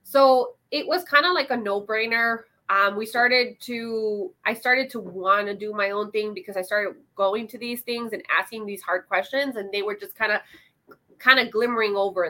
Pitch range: 200-235 Hz